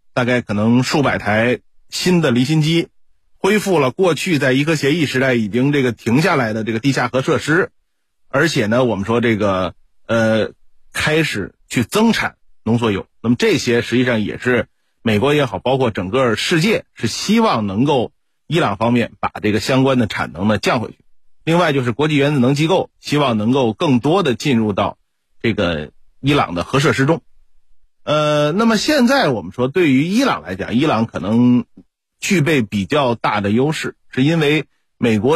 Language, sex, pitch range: Chinese, male, 110-150 Hz